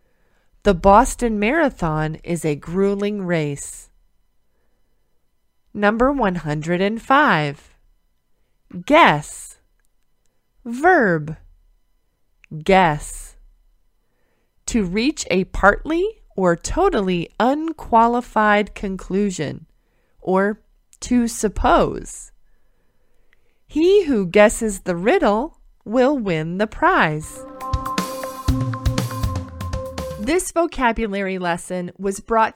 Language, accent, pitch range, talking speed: English, American, 170-255 Hz, 70 wpm